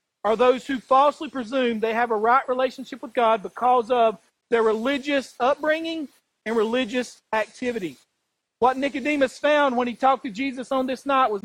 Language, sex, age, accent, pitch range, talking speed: English, male, 40-59, American, 245-280 Hz, 170 wpm